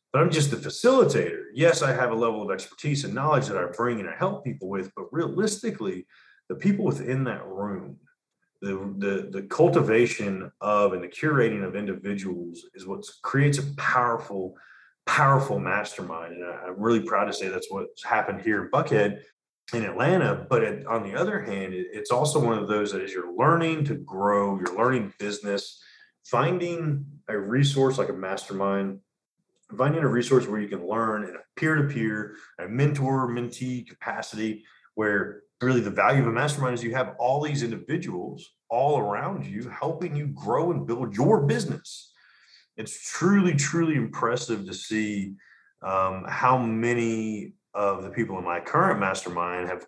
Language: English